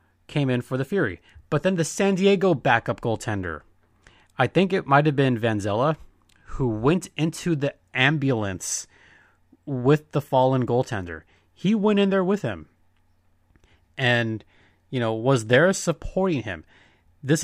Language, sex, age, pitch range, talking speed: English, male, 30-49, 110-155 Hz, 145 wpm